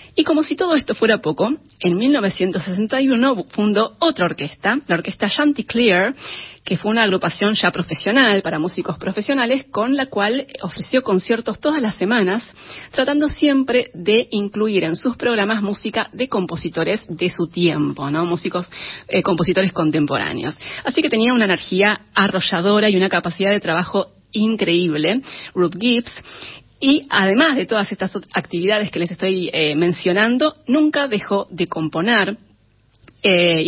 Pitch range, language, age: 175-225 Hz, Spanish, 30-49